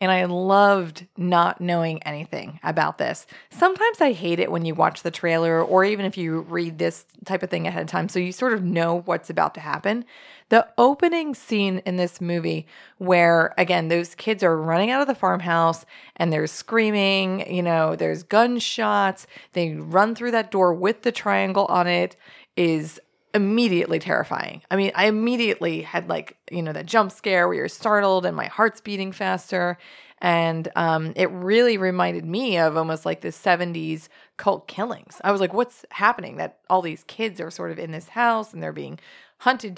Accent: American